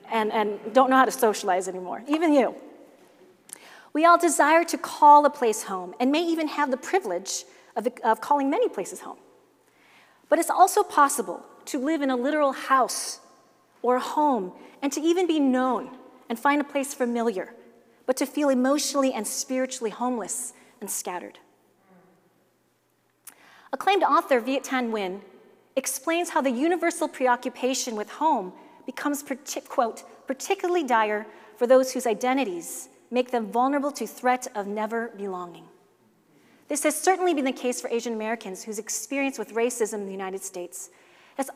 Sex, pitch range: female, 225-295 Hz